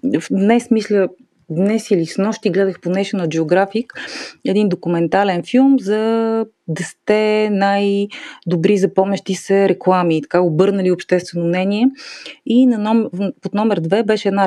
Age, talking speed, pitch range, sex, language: 30-49, 135 wpm, 175-220 Hz, female, Bulgarian